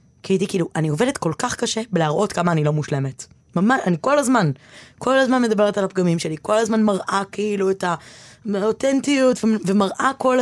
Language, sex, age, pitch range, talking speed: Hebrew, female, 20-39, 160-220 Hz, 180 wpm